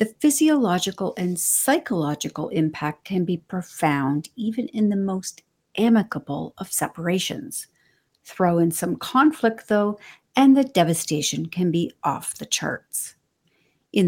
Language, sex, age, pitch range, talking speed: English, female, 50-69, 165-225 Hz, 125 wpm